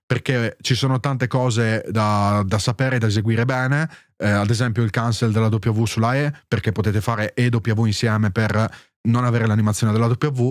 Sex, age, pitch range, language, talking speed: male, 30-49, 105-130 Hz, Italian, 190 wpm